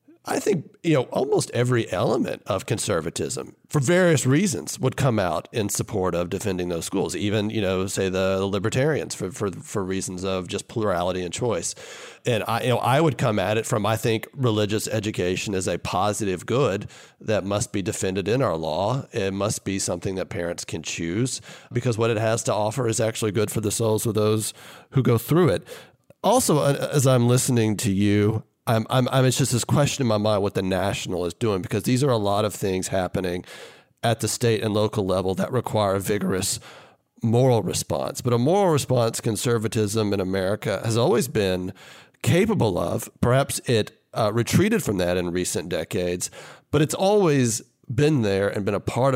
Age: 40-59